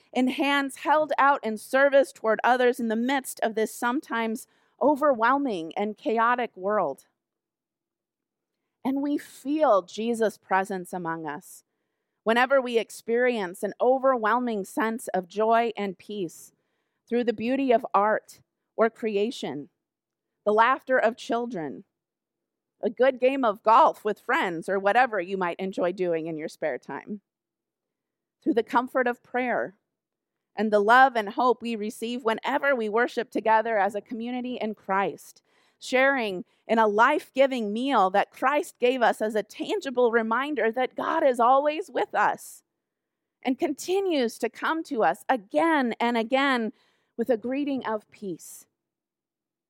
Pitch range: 205-255 Hz